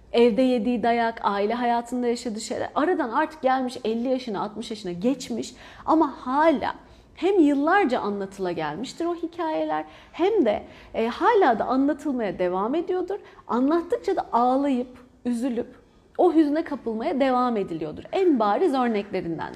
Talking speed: 130 wpm